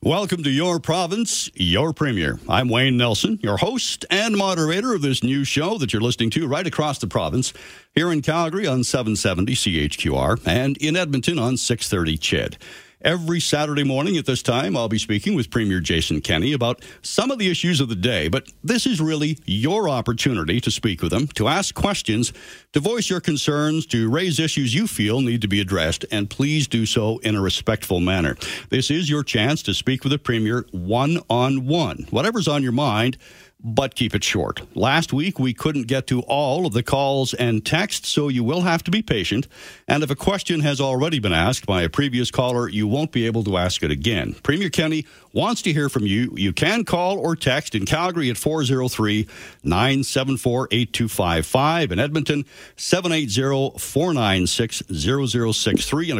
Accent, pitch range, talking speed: American, 110-155 Hz, 180 wpm